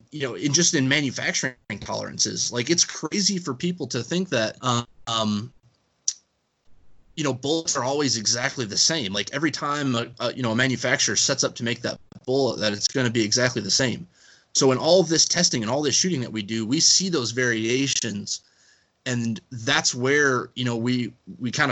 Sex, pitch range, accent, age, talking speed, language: male, 115-140 Hz, American, 20-39, 195 wpm, English